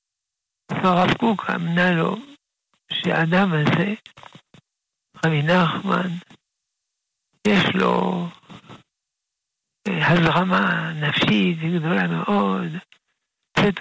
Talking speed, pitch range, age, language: 65 wpm, 160-185 Hz, 60-79, Hebrew